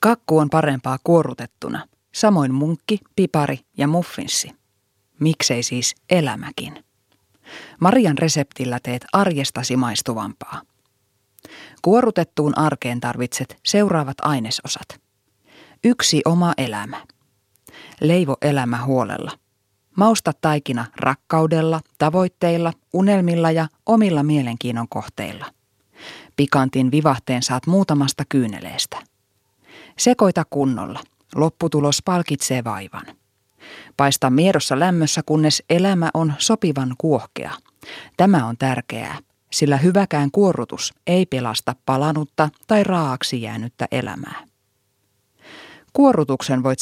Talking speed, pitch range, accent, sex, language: 90 wpm, 125-165 Hz, native, female, Finnish